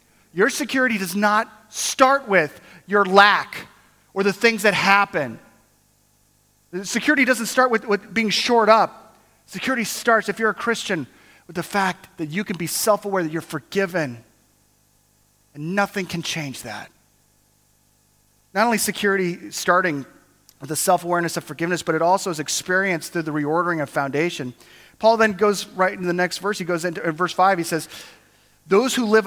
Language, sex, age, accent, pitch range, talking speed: English, male, 30-49, American, 170-215 Hz, 170 wpm